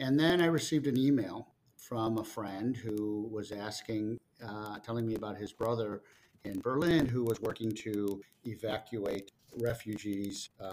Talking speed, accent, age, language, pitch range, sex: 145 wpm, American, 50-69, English, 105-125 Hz, male